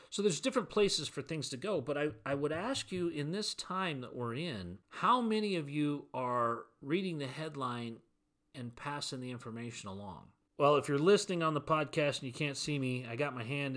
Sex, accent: male, American